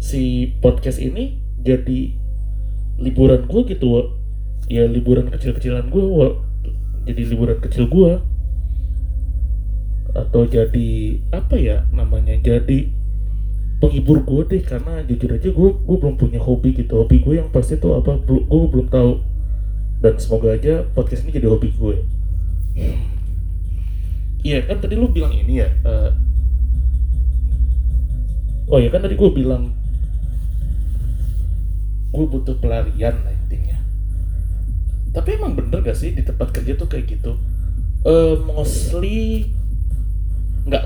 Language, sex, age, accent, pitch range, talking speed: Indonesian, male, 30-49, native, 85-120 Hz, 125 wpm